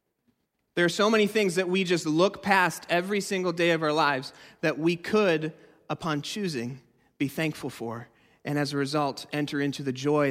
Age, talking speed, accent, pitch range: 30-49, 185 wpm, American, 135-175 Hz